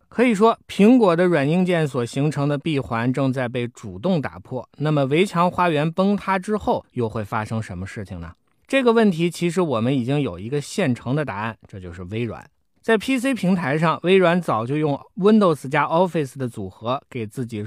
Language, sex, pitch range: Chinese, male, 115-185 Hz